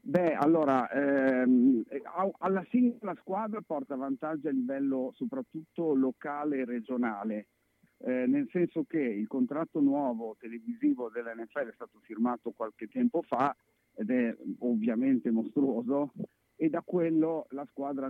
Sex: male